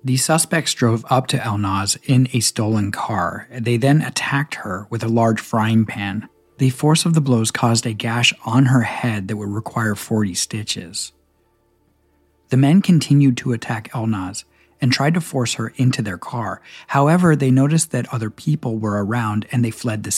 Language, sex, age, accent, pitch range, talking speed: English, male, 40-59, American, 105-130 Hz, 180 wpm